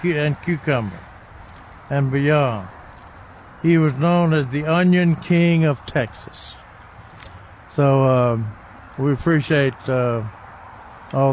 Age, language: 60-79, English